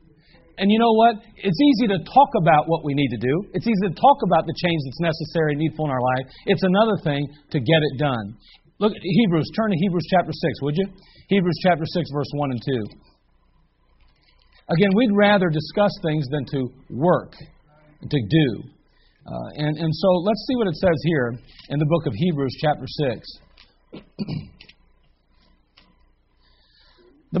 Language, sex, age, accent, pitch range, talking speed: English, male, 40-59, American, 140-190 Hz, 175 wpm